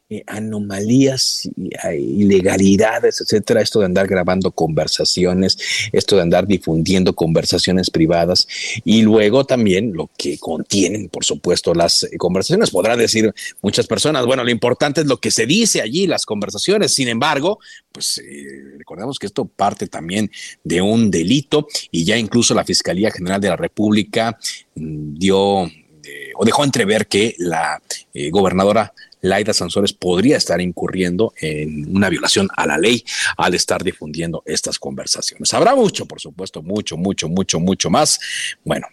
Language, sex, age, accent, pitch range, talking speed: Spanish, male, 50-69, Mexican, 90-130 Hz, 150 wpm